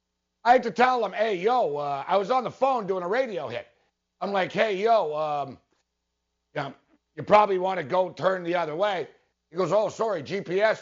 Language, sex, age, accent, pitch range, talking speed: English, male, 60-79, American, 160-220 Hz, 205 wpm